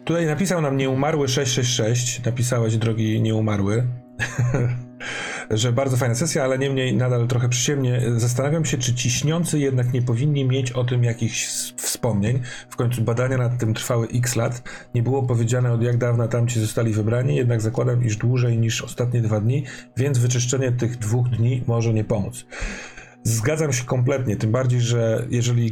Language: Polish